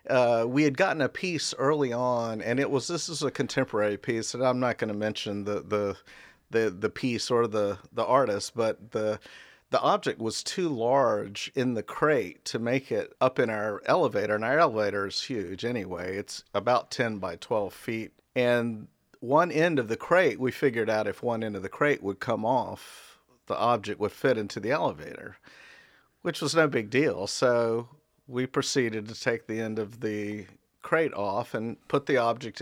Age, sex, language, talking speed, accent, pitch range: 50-69, male, English, 195 wpm, American, 105-125 Hz